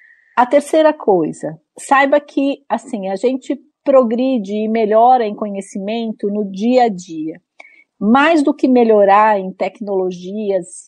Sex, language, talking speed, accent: female, Portuguese, 120 wpm, Brazilian